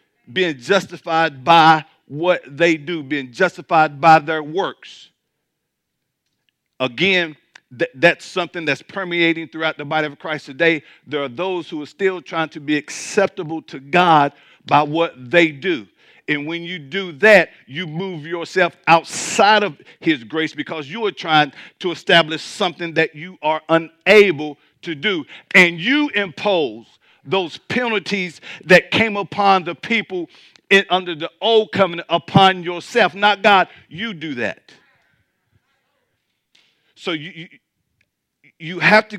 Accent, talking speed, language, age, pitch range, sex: American, 135 wpm, English, 50-69, 160-195 Hz, male